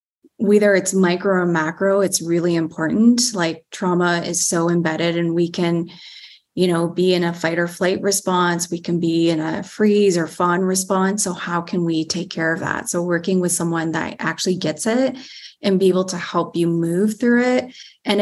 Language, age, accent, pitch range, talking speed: English, 20-39, American, 170-195 Hz, 200 wpm